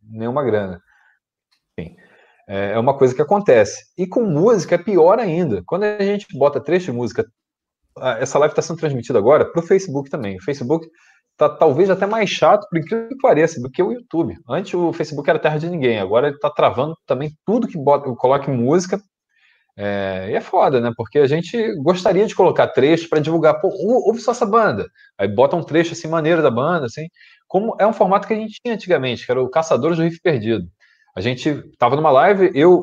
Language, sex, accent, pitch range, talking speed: Portuguese, male, Brazilian, 135-205 Hz, 205 wpm